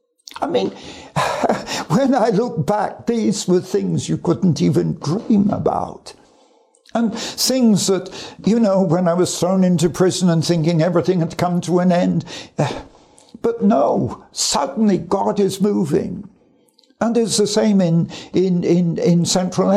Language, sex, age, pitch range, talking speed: English, male, 60-79, 180-230 Hz, 145 wpm